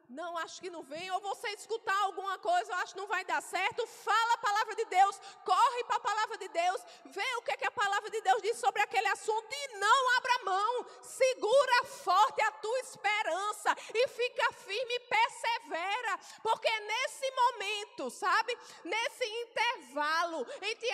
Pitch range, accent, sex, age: 290-430 Hz, Brazilian, female, 20-39